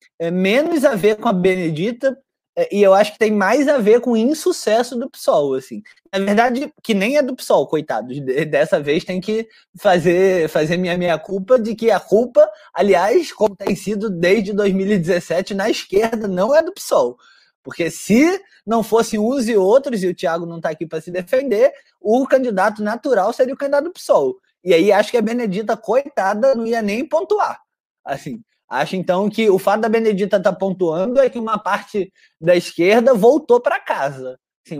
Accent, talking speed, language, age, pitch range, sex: Brazilian, 190 wpm, Portuguese, 20-39, 180-265 Hz, male